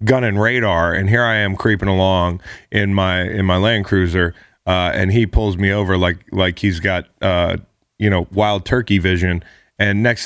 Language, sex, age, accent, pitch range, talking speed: English, male, 30-49, American, 95-120 Hz, 195 wpm